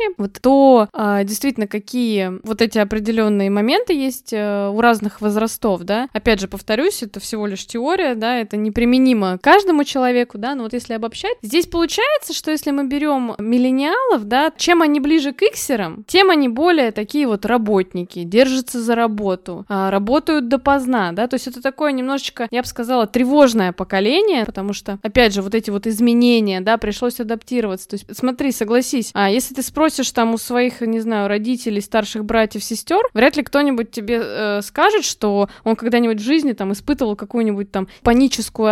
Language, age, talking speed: Russian, 20-39, 170 wpm